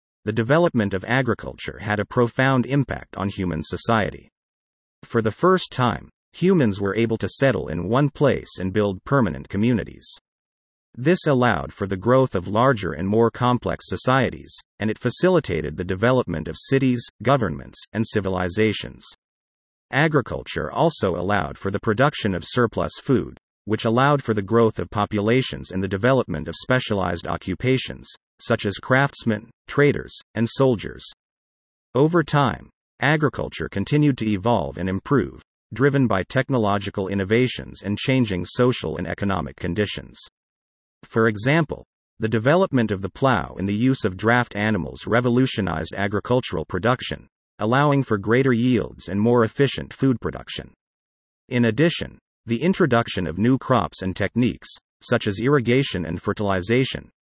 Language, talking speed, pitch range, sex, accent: English, 140 wpm, 95-130 Hz, male, American